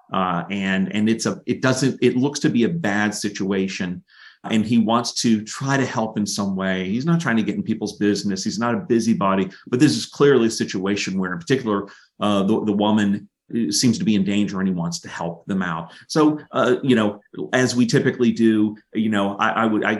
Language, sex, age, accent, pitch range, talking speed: English, male, 30-49, American, 105-130 Hz, 225 wpm